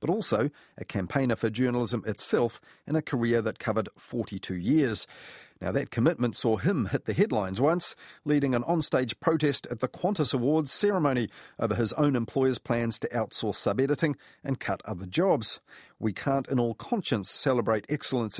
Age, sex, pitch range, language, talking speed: 40-59, male, 110-145 Hz, English, 165 wpm